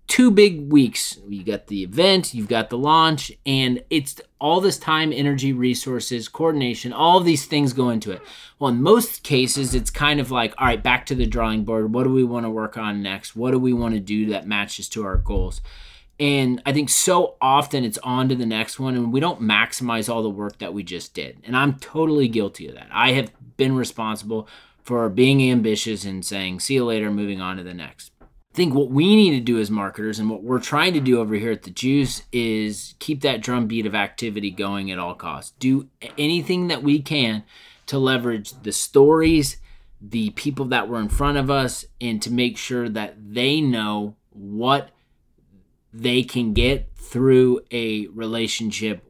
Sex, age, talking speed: male, 30-49, 205 wpm